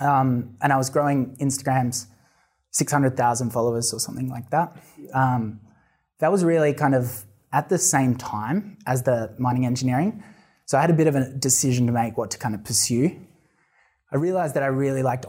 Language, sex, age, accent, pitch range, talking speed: English, male, 20-39, Australian, 125-145 Hz, 185 wpm